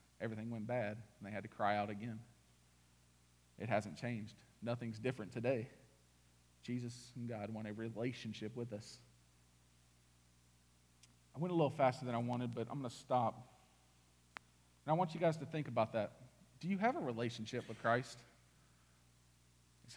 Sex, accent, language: male, American, English